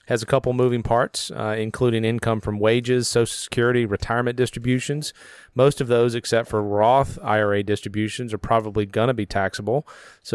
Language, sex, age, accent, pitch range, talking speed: English, male, 40-59, American, 105-125 Hz, 160 wpm